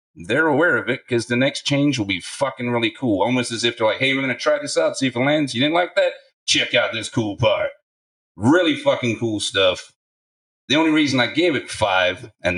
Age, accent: 40-59, American